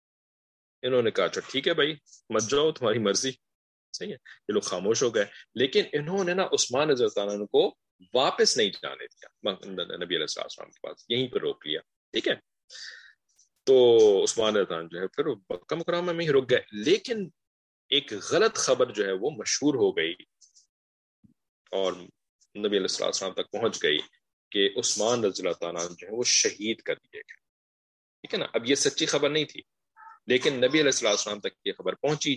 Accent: Indian